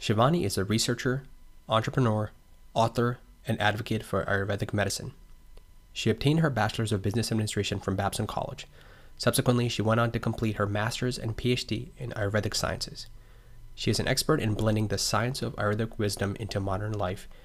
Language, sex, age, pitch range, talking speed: English, male, 20-39, 100-120 Hz, 165 wpm